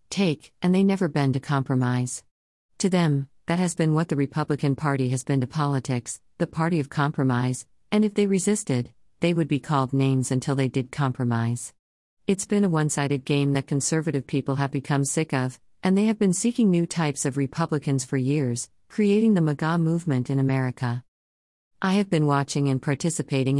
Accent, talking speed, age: American, 185 wpm, 50-69